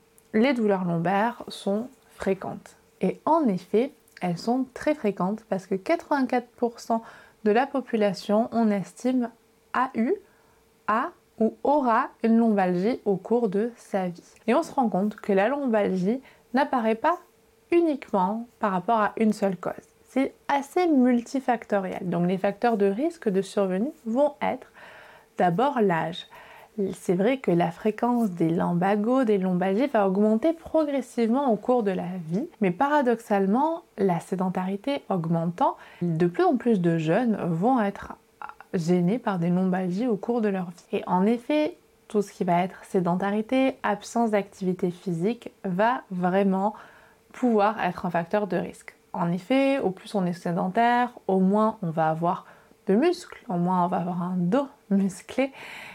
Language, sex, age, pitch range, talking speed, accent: French, female, 20-39, 190-245 Hz, 155 wpm, French